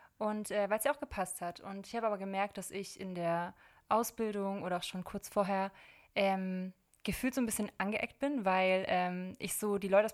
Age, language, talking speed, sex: 20-39, German, 220 wpm, female